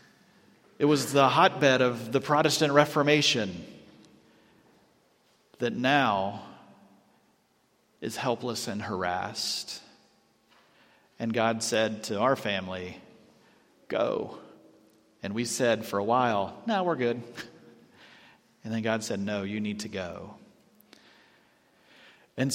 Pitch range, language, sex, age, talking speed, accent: 115-150 Hz, English, male, 40-59, 110 wpm, American